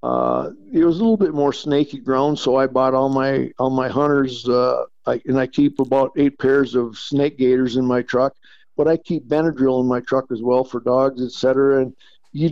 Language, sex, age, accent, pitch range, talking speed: English, male, 50-69, American, 130-155 Hz, 220 wpm